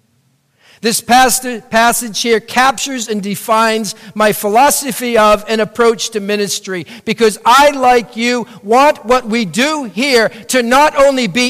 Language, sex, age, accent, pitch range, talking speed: English, male, 50-69, American, 190-230 Hz, 135 wpm